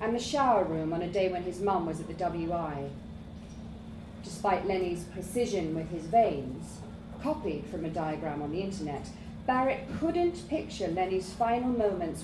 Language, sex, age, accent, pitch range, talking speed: English, female, 40-59, British, 180-235 Hz, 160 wpm